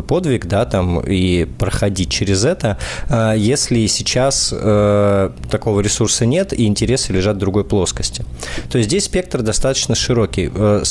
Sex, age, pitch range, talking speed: male, 20-39, 95-115 Hz, 130 wpm